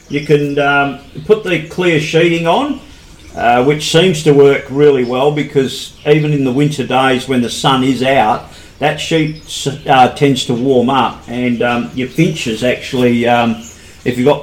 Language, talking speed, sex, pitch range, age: English, 175 wpm, male, 110-135 Hz, 40-59